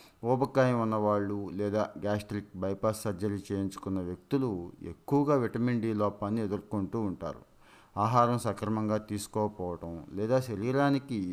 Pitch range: 95-115 Hz